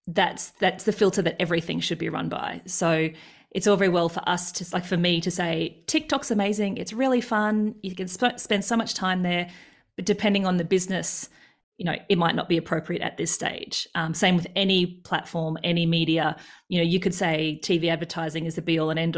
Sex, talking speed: female, 220 wpm